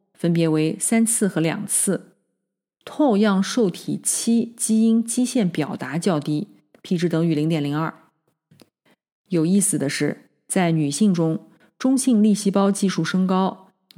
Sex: female